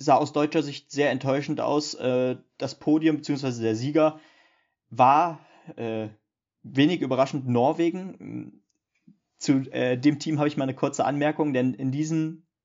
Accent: German